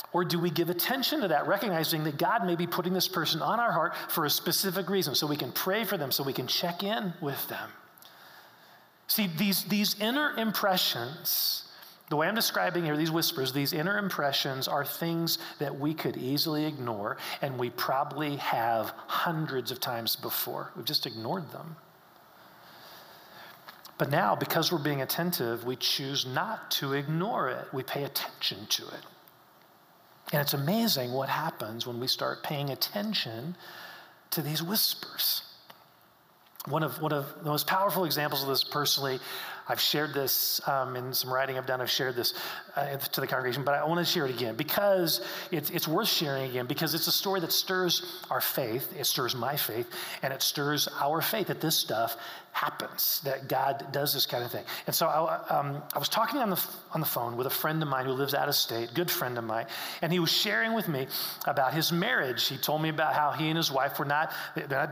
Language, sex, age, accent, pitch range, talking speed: English, male, 40-59, American, 140-180 Hz, 200 wpm